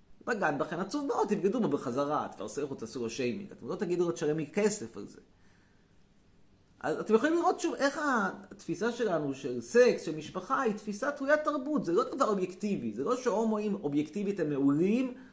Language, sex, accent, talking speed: Hebrew, male, native, 185 wpm